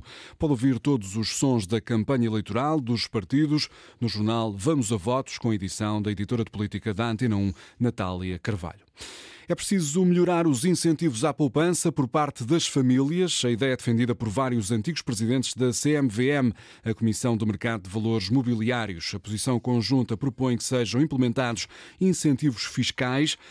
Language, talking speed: Portuguese, 165 wpm